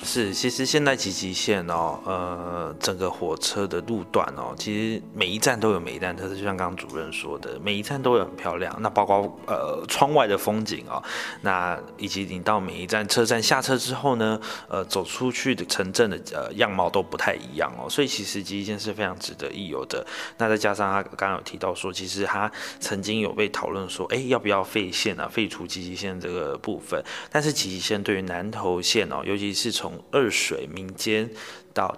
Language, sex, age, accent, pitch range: Chinese, male, 20-39, native, 95-115 Hz